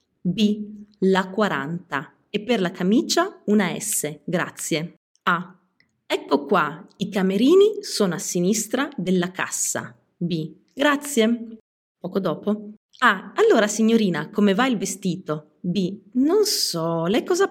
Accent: Italian